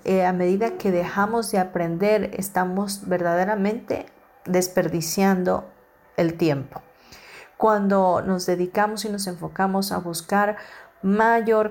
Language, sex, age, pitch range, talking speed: Spanish, female, 40-59, 175-205 Hz, 110 wpm